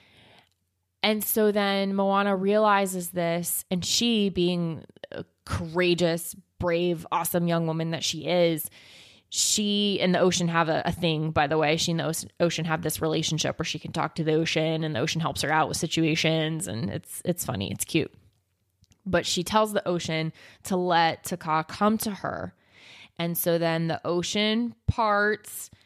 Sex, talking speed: female, 170 wpm